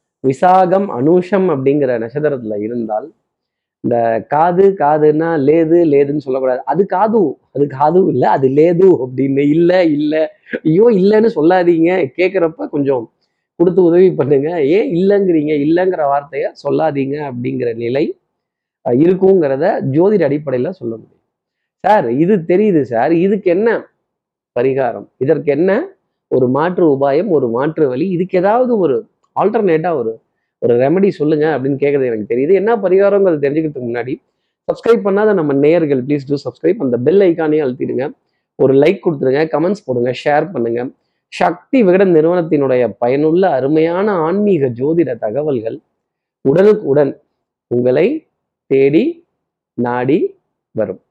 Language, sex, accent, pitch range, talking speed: Tamil, male, native, 135-185 Hz, 120 wpm